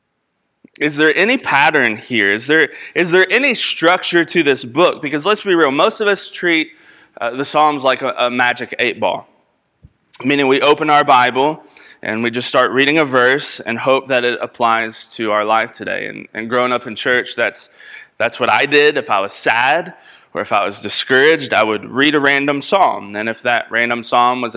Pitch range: 125-180 Hz